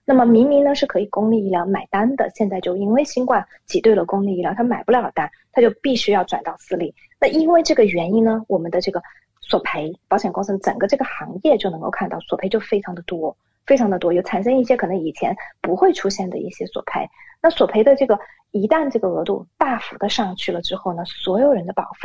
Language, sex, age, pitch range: English, female, 30-49, 190-250 Hz